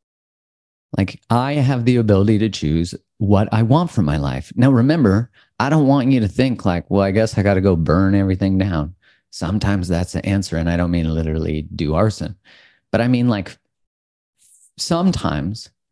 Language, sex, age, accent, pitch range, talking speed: English, male, 40-59, American, 80-105 Hz, 180 wpm